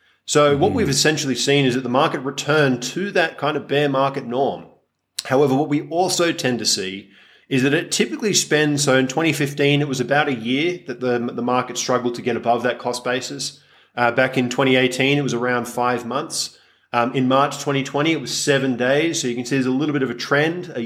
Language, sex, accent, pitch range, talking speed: English, male, Australian, 125-145 Hz, 220 wpm